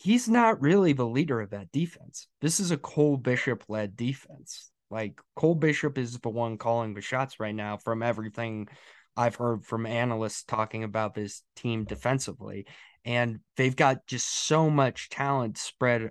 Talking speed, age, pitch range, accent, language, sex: 165 wpm, 20-39, 110-135 Hz, American, English, male